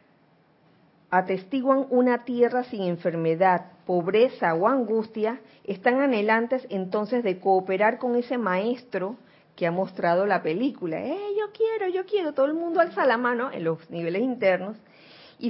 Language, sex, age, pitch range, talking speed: Spanish, female, 40-59, 190-260 Hz, 145 wpm